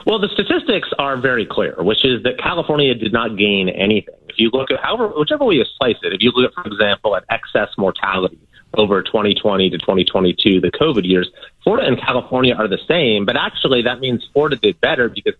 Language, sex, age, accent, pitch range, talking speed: English, male, 30-49, American, 105-140 Hz, 210 wpm